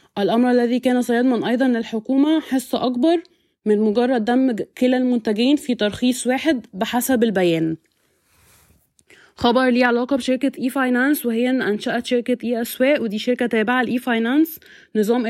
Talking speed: 125 wpm